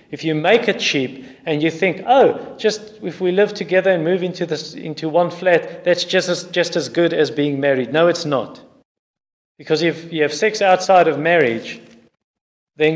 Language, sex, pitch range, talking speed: English, male, 140-180 Hz, 195 wpm